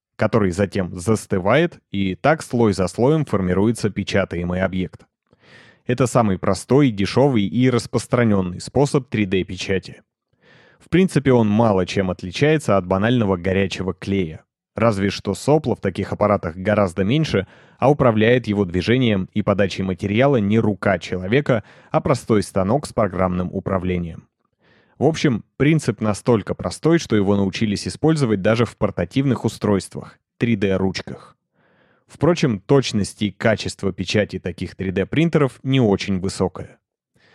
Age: 30-49